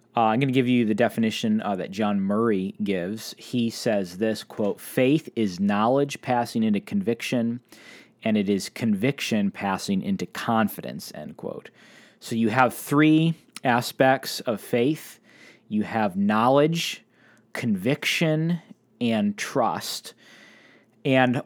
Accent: American